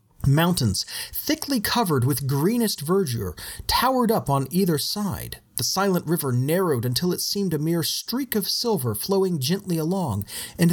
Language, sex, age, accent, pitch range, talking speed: English, male, 40-59, American, 120-190 Hz, 150 wpm